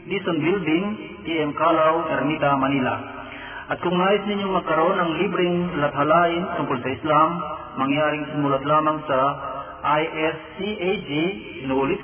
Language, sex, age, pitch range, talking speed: Filipino, male, 40-59, 130-170 Hz, 115 wpm